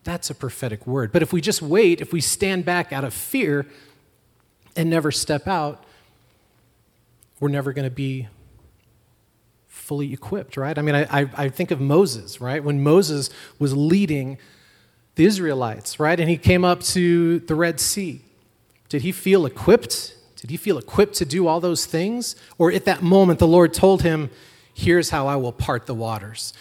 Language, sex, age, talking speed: English, male, 30-49, 180 wpm